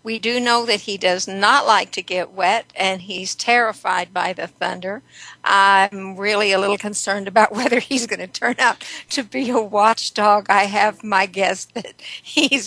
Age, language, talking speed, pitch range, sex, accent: 60-79, English, 185 wpm, 195-235 Hz, female, American